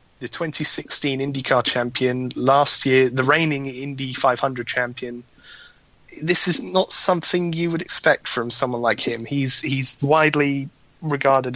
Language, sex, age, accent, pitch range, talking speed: English, male, 20-39, British, 120-145 Hz, 135 wpm